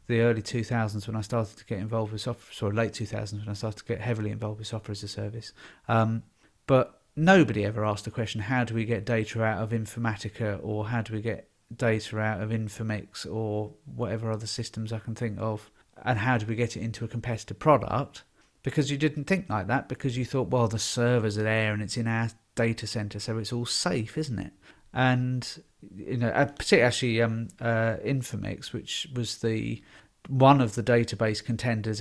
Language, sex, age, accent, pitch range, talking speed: English, male, 40-59, British, 110-130 Hz, 205 wpm